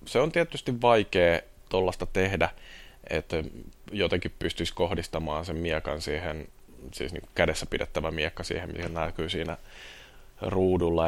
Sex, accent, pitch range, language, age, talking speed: male, native, 80-95 Hz, Finnish, 20-39, 125 wpm